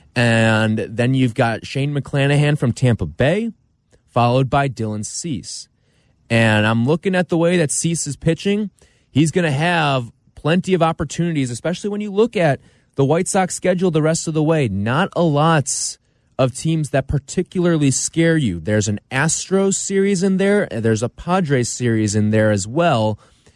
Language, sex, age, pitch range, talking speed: English, male, 20-39, 120-165 Hz, 175 wpm